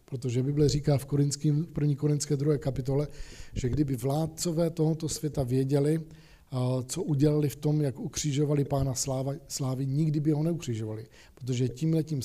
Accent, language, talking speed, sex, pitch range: native, Czech, 135 wpm, male, 135-155 Hz